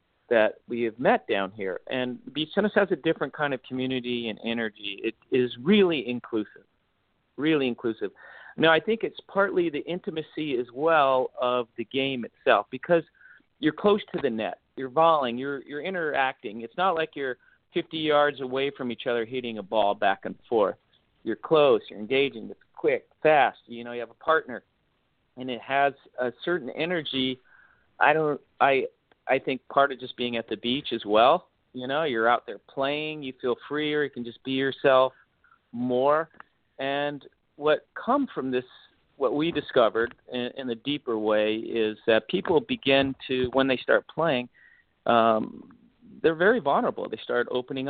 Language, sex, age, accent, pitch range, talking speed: English, male, 50-69, American, 120-150 Hz, 175 wpm